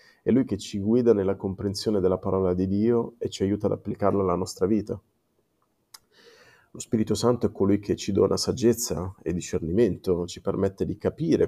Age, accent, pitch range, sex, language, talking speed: 30-49, native, 95-105 Hz, male, Italian, 180 wpm